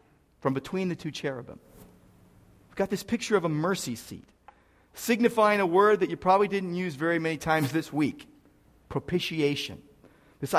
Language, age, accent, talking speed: English, 40-59, American, 160 wpm